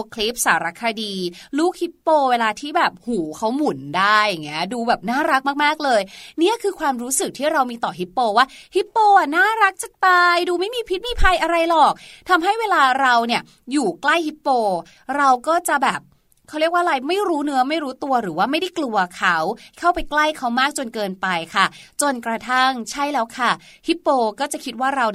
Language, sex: Thai, female